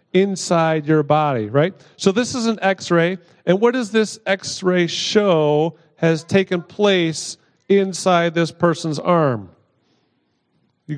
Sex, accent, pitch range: male, American, 145-185 Hz